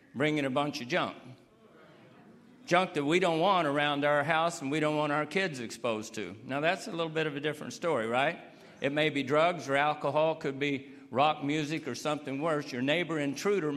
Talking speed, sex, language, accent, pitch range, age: 205 wpm, male, English, American, 135-165 Hz, 50-69